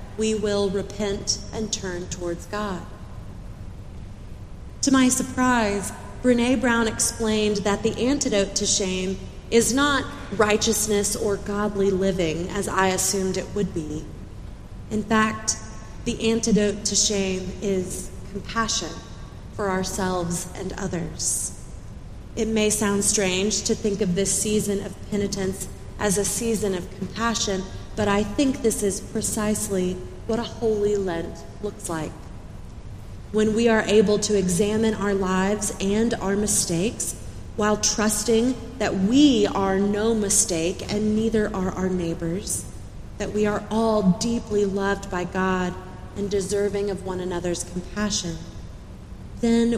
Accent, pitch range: American, 180-215 Hz